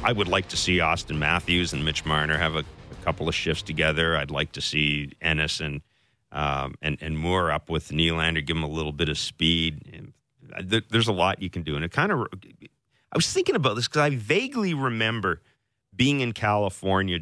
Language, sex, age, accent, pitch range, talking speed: English, male, 40-59, American, 80-105 Hz, 210 wpm